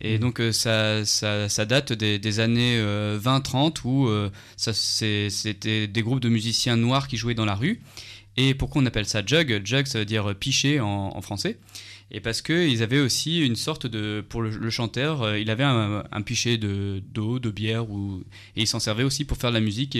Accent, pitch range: French, 105-130 Hz